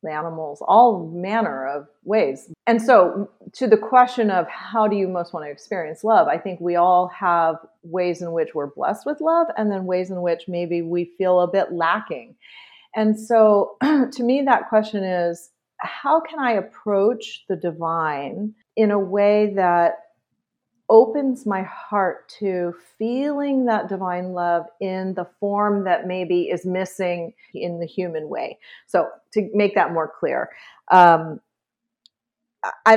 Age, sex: 40-59, female